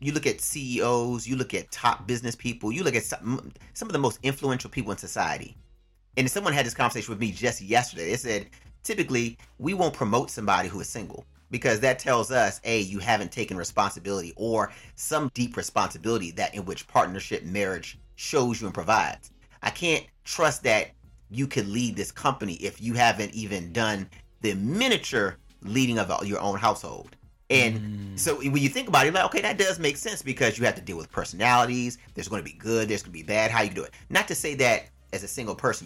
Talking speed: 215 wpm